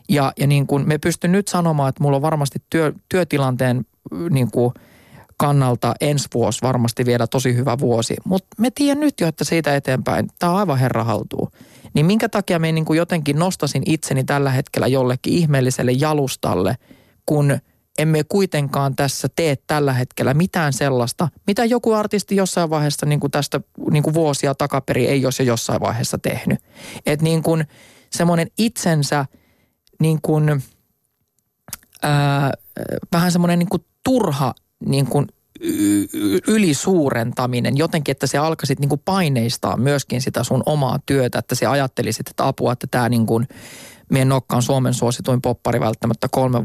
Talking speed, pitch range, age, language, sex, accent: 155 wpm, 130-175 Hz, 20-39, Finnish, male, native